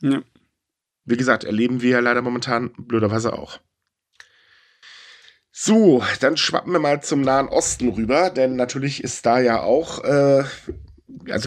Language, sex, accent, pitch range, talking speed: German, male, German, 105-140 Hz, 135 wpm